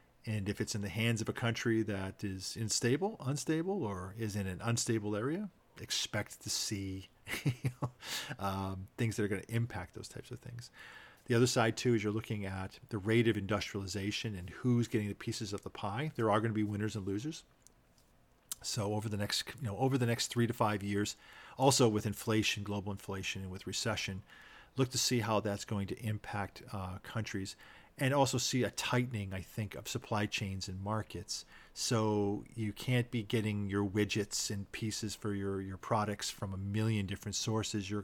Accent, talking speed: American, 195 wpm